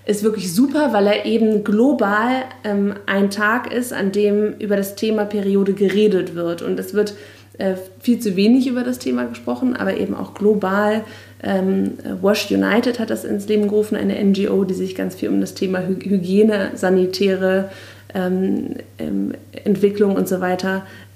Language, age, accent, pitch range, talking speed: German, 30-49, German, 185-210 Hz, 160 wpm